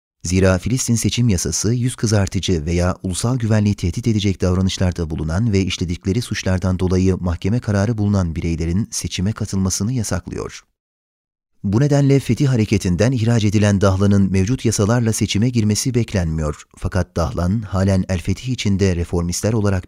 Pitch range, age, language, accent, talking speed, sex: 90-110 Hz, 30-49, Turkish, native, 135 wpm, male